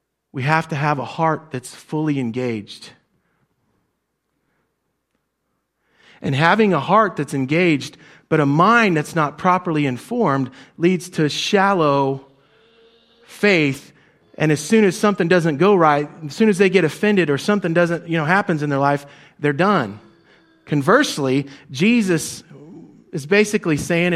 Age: 40-59